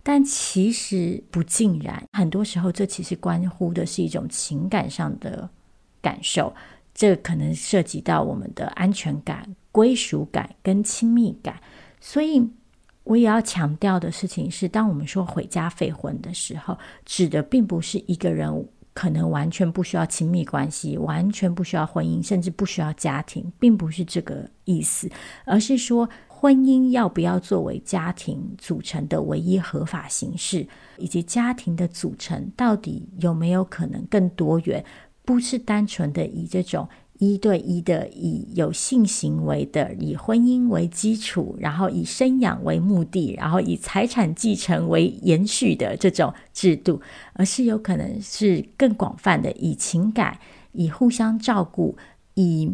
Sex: female